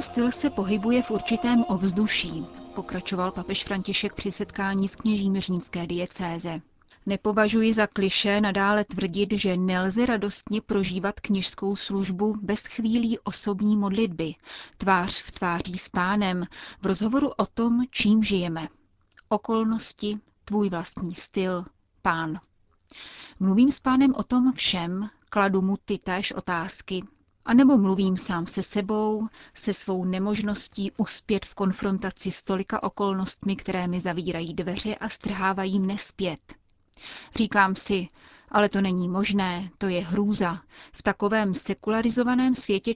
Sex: female